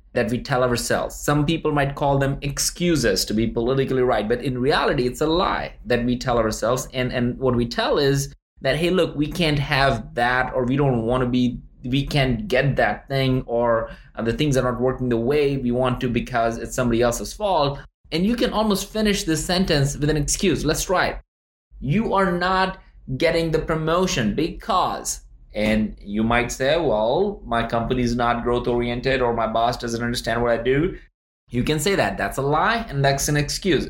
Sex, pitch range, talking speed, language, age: male, 120-150 Hz, 200 wpm, English, 20-39